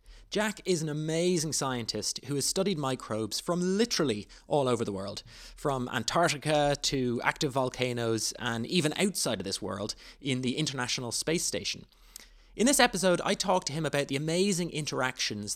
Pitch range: 120-170 Hz